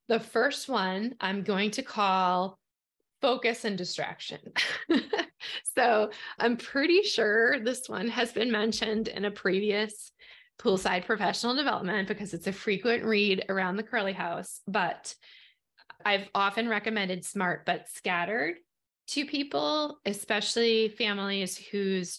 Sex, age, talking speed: female, 20-39, 125 wpm